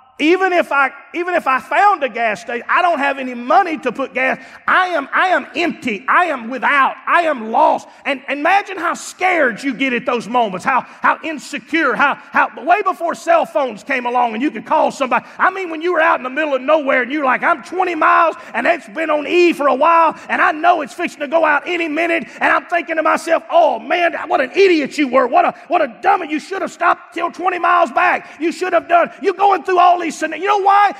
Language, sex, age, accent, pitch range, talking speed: English, male, 30-49, American, 285-360 Hz, 250 wpm